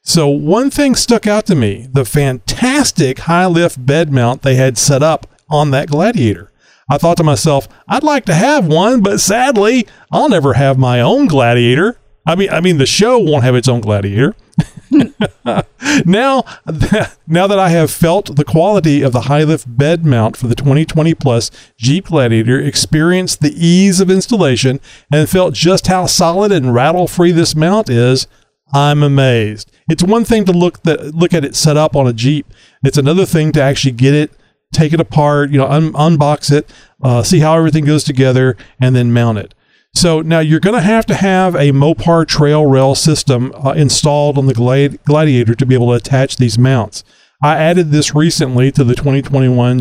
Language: English